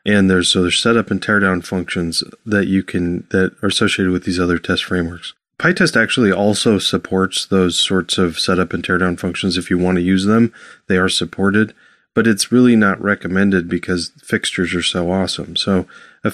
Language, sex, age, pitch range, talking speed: English, male, 30-49, 90-95 Hz, 185 wpm